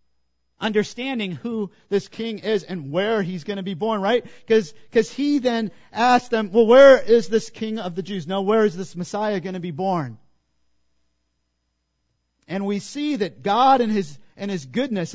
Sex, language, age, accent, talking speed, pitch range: male, English, 50-69, American, 175 wpm, 165-240 Hz